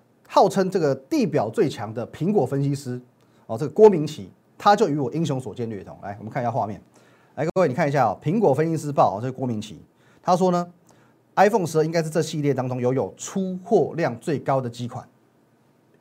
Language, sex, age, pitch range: Chinese, male, 30-49, 125-170 Hz